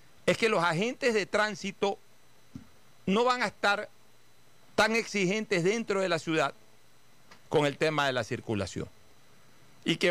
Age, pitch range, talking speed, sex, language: 50-69, 125-190 Hz, 140 wpm, male, Spanish